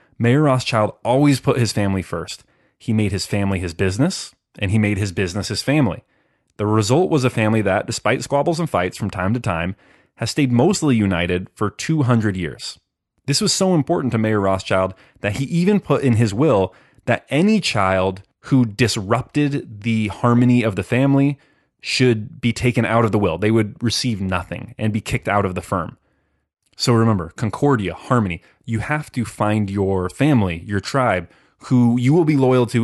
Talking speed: 185 wpm